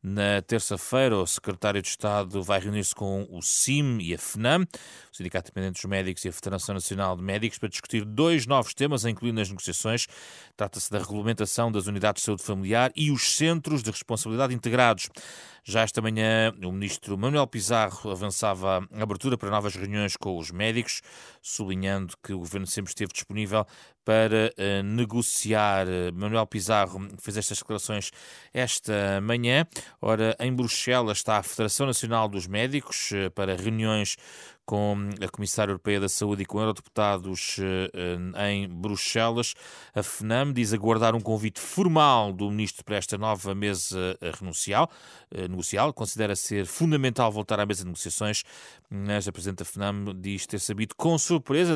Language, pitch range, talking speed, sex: Portuguese, 100-115 Hz, 155 wpm, male